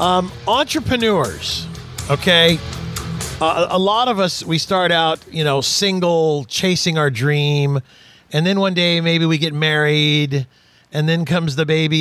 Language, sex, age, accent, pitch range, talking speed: English, male, 40-59, American, 140-185 Hz, 150 wpm